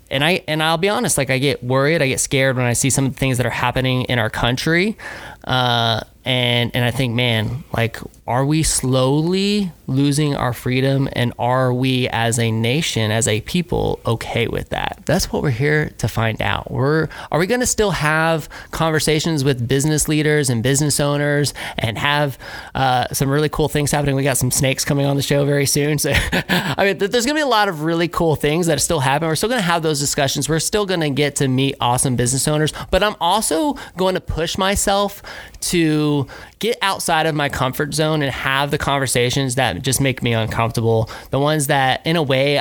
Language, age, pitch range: English, 20-39, 125-155 Hz